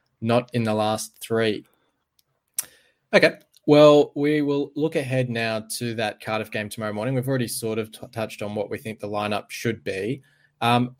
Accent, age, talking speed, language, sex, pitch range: Australian, 20-39, 180 wpm, English, male, 105-125 Hz